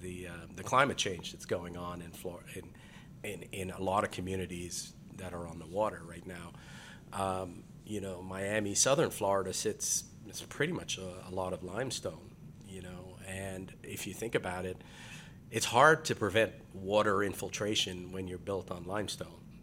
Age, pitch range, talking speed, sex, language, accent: 40-59, 90-110 Hz, 175 wpm, male, English, American